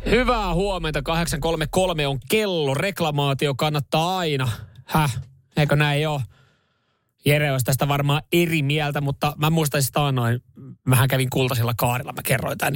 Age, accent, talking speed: 20-39, native, 135 wpm